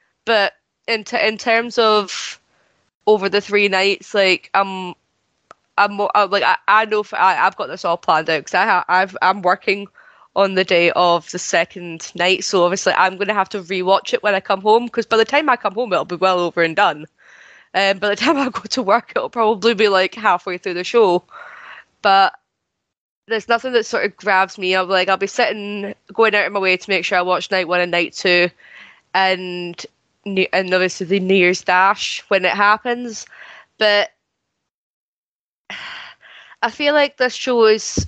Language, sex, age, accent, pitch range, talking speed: English, female, 20-39, British, 190-235 Hz, 205 wpm